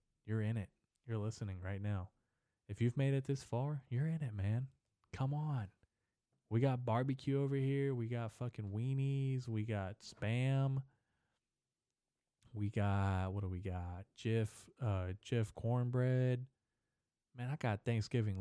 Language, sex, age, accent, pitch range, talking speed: English, male, 20-39, American, 105-135 Hz, 145 wpm